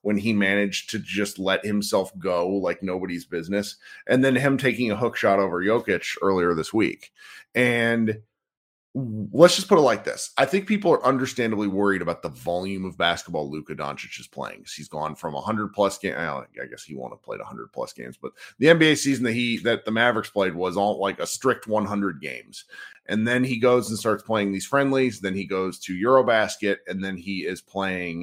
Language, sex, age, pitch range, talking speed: English, male, 30-49, 100-135 Hz, 200 wpm